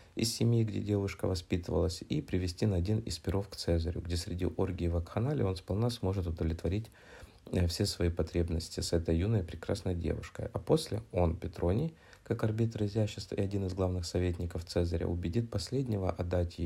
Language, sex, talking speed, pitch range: Russian, male, 160 wpm, 85-105 Hz